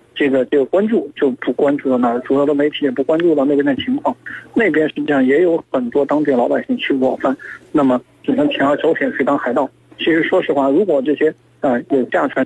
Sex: male